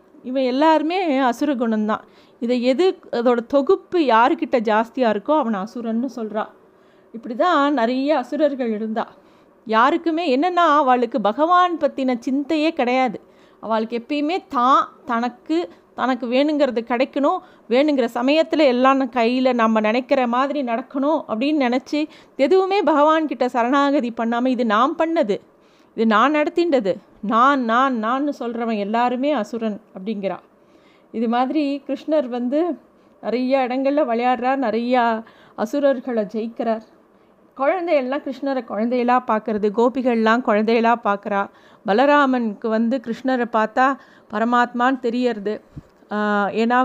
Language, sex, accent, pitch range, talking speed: Tamil, female, native, 220-275 Hz, 105 wpm